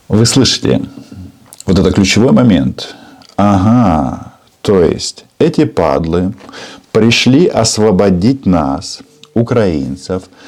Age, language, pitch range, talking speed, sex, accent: 50-69, Russian, 85-115 Hz, 85 wpm, male, native